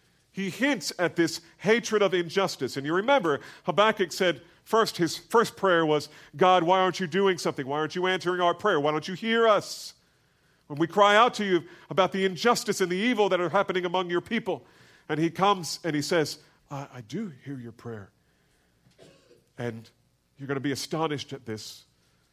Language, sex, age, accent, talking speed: English, male, 40-59, American, 195 wpm